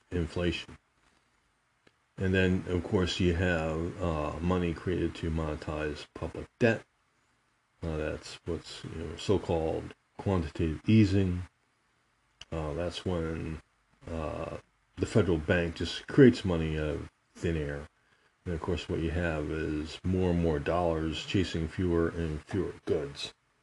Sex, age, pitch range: male, 40-59, 80-95 Hz